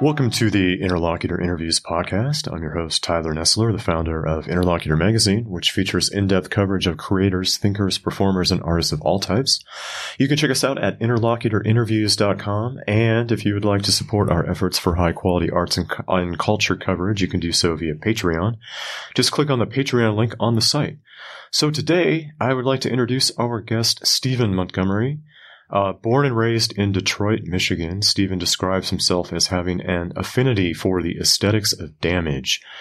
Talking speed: 175 wpm